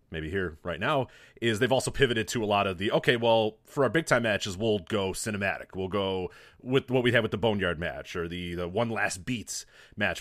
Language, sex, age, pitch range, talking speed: English, male, 30-49, 95-130 Hz, 230 wpm